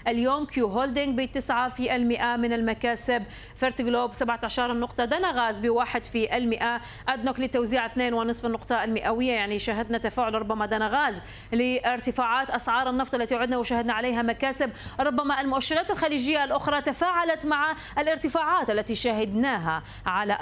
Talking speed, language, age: 140 wpm, Arabic, 30-49